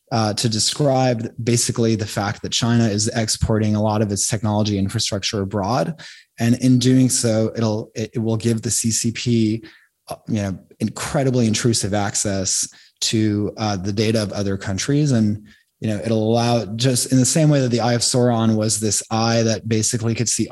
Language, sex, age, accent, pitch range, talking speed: English, male, 20-39, American, 105-125 Hz, 180 wpm